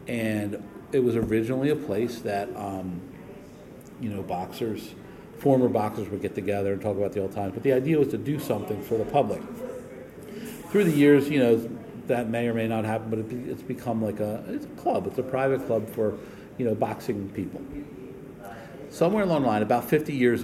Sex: male